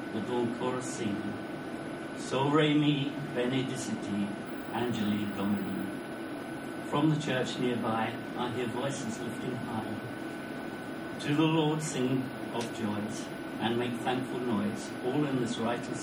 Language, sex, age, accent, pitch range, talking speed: English, male, 60-79, British, 125-160 Hz, 120 wpm